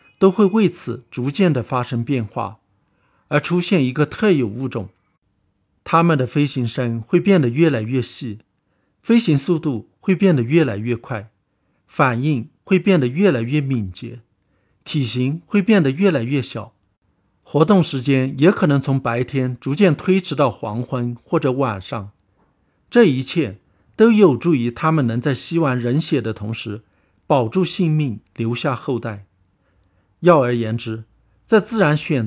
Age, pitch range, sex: 60-79, 110-160 Hz, male